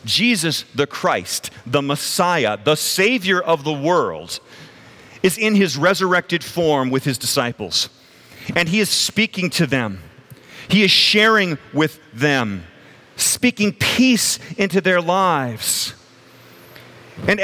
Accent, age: American, 40-59